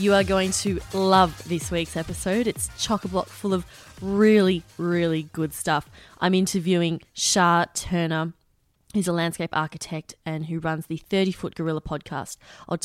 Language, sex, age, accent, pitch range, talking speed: English, female, 20-39, Australian, 160-195 Hz, 155 wpm